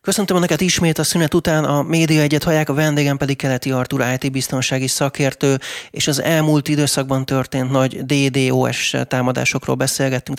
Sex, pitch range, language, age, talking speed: male, 130-145 Hz, Hungarian, 30-49, 155 wpm